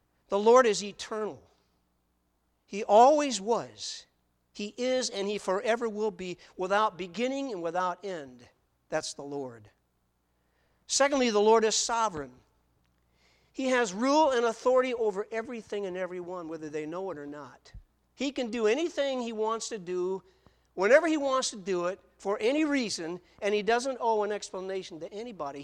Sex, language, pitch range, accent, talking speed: male, English, 140-235 Hz, American, 155 wpm